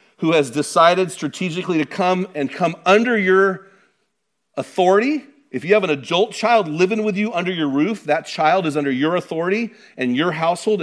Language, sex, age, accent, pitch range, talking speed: English, male, 40-59, American, 135-190 Hz, 175 wpm